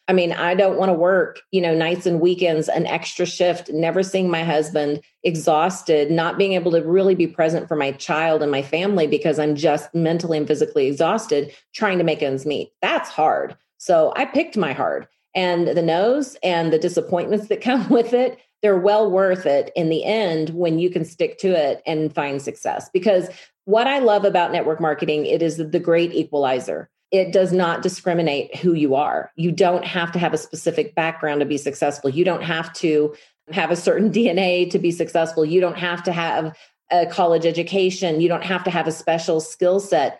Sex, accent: female, American